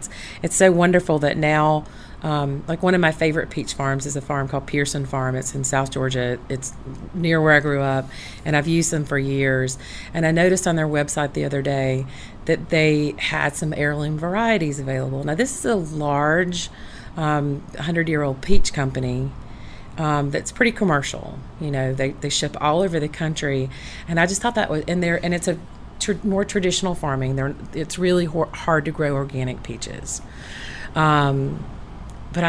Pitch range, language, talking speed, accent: 140-170 Hz, English, 190 wpm, American